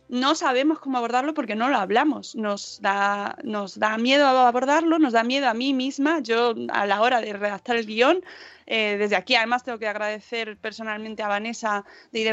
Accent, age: Spanish, 20-39